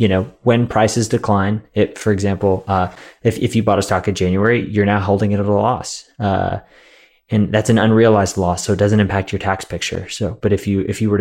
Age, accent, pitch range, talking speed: 20-39, American, 95-115 Hz, 235 wpm